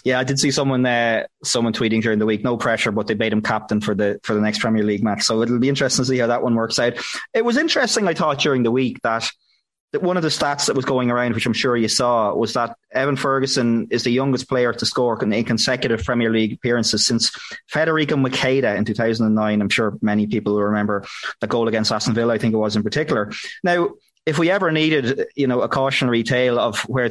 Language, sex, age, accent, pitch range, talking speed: English, male, 20-39, Irish, 115-135 Hz, 240 wpm